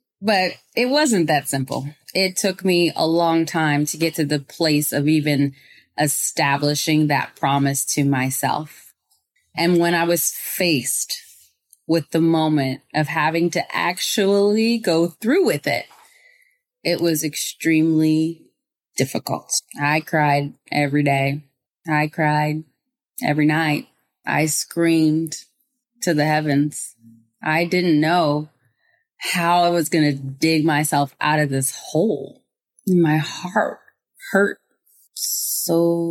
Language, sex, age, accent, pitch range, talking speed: English, female, 20-39, American, 145-170 Hz, 125 wpm